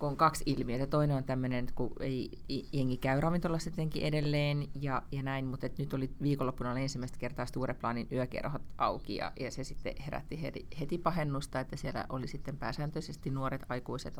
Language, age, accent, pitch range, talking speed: Finnish, 30-49, native, 125-145 Hz, 175 wpm